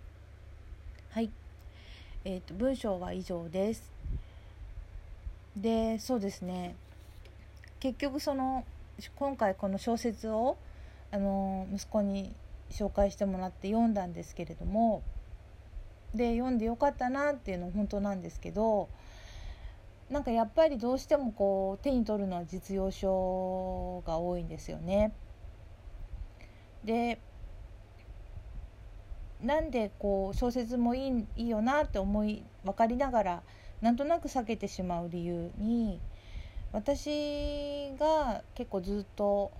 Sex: female